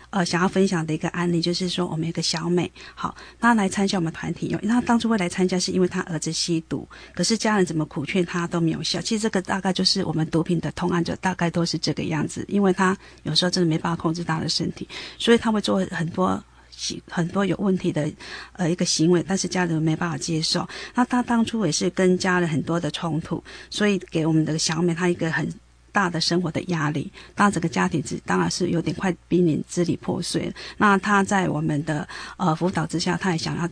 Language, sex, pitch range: Chinese, female, 165-190 Hz